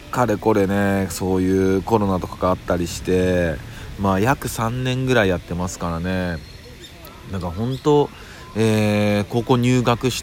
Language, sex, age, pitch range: Japanese, male, 40-59, 90-110 Hz